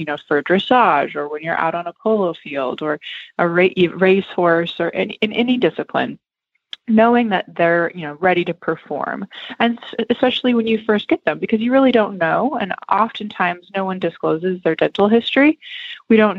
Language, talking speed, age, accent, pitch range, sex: English, 185 wpm, 20-39, American, 160-220 Hz, female